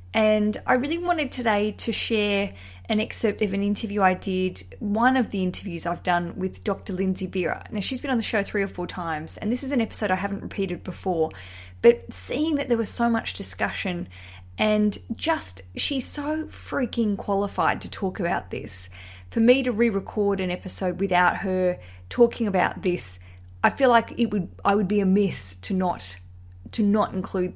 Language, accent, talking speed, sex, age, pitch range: English, Australian, 185 wpm, female, 20-39, 175-230 Hz